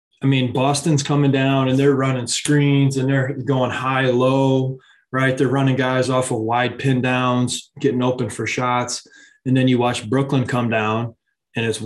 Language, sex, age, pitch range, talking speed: English, male, 20-39, 115-135 Hz, 180 wpm